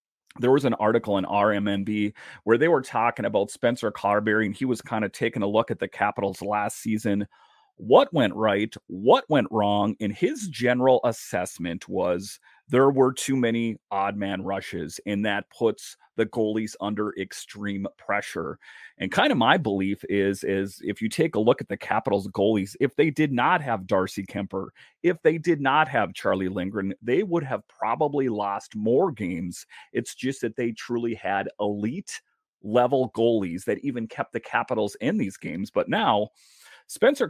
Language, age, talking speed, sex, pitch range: English, 30-49, 175 wpm, male, 100-125 Hz